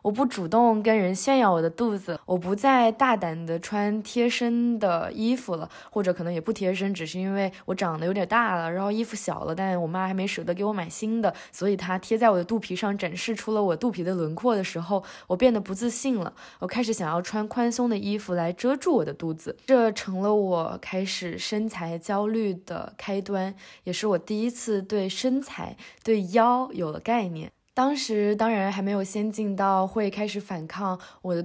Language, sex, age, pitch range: Chinese, female, 20-39, 175-225 Hz